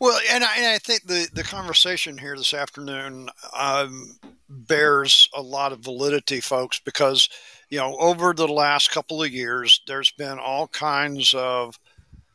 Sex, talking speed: male, 160 wpm